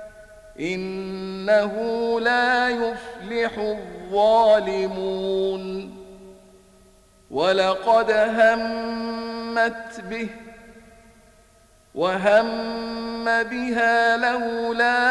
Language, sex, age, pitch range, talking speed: Arabic, male, 50-69, 210-230 Hz, 40 wpm